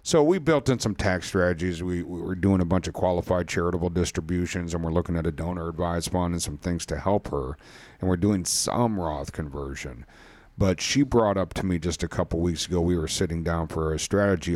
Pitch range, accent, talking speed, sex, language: 90-115 Hz, American, 225 wpm, male, English